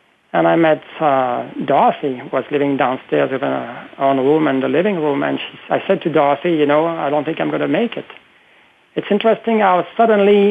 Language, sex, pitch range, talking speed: English, male, 145-190 Hz, 210 wpm